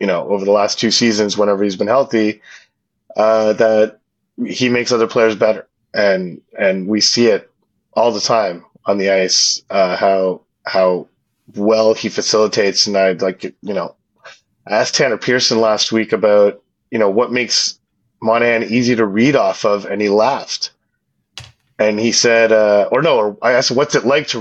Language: English